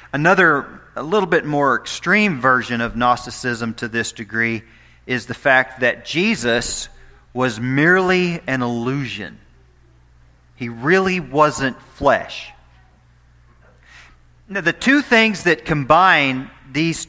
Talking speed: 110 wpm